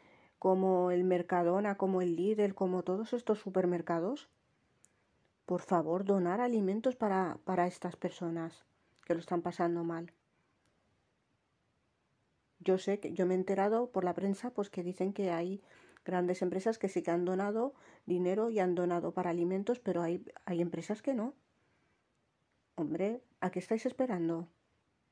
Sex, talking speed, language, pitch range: female, 150 wpm, Spanish, 180-205 Hz